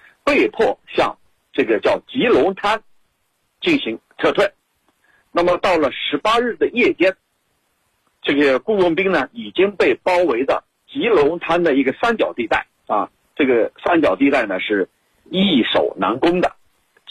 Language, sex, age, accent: Chinese, male, 50-69, native